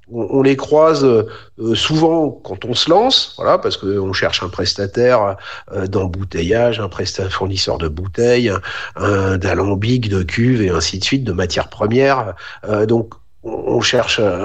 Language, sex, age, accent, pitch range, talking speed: French, male, 40-59, French, 110-150 Hz, 140 wpm